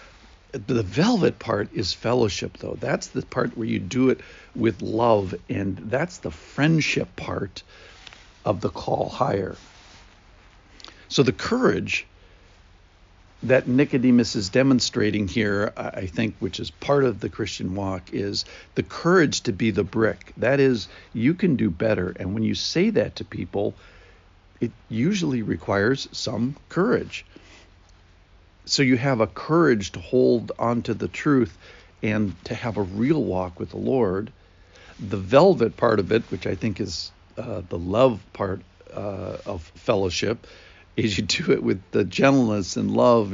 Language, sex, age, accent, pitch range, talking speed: English, male, 60-79, American, 95-120 Hz, 150 wpm